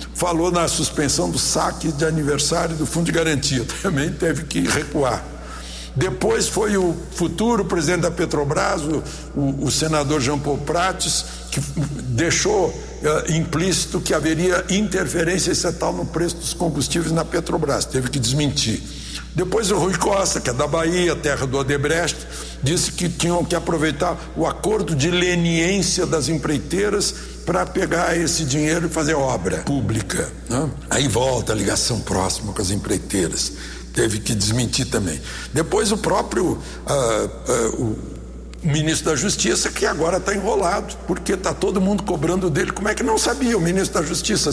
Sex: male